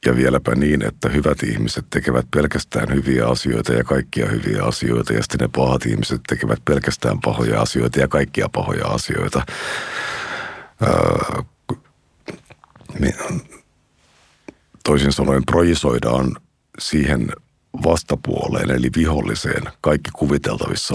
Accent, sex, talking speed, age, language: native, male, 105 wpm, 60-79, Finnish